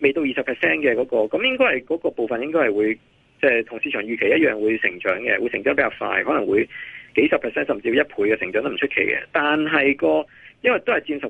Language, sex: Chinese, male